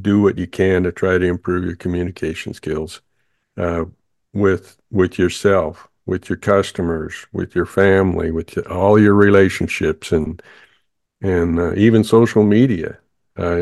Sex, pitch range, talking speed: male, 85-95 Hz, 140 wpm